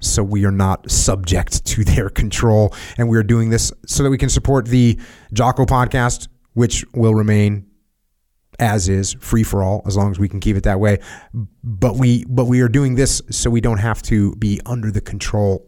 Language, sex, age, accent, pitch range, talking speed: English, male, 30-49, American, 90-120 Hz, 205 wpm